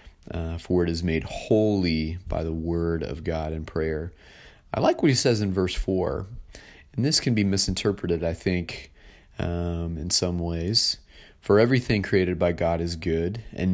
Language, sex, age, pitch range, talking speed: English, male, 30-49, 85-100 Hz, 175 wpm